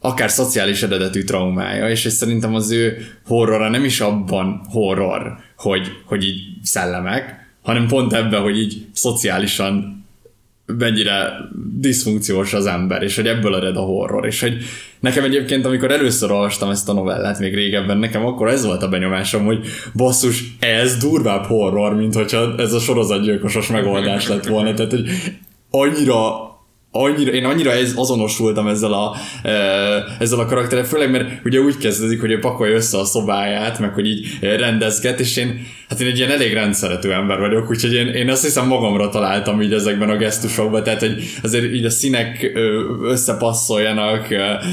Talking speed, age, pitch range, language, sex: 155 wpm, 20-39, 105-125 Hz, Hungarian, male